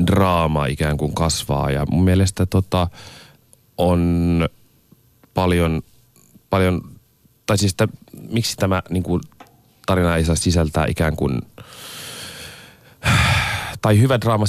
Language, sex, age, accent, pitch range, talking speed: Finnish, male, 30-49, native, 80-100 Hz, 110 wpm